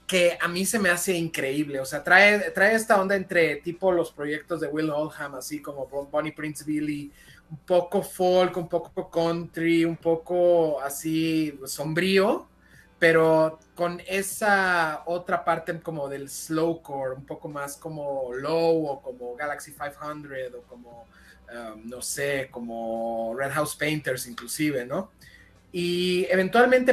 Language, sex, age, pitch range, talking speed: Spanish, male, 30-49, 145-175 Hz, 145 wpm